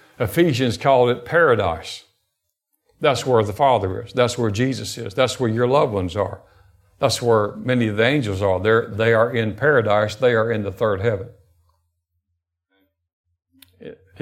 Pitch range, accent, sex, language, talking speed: 100-130 Hz, American, male, English, 160 wpm